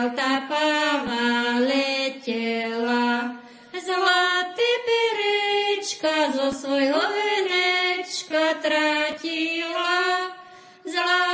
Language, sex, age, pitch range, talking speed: Slovak, female, 30-49, 245-360 Hz, 55 wpm